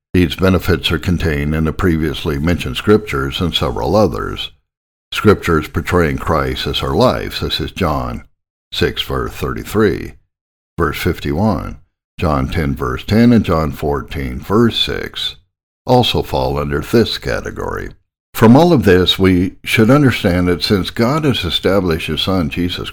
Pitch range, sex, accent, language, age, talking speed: 75-100 Hz, male, American, English, 60-79, 145 wpm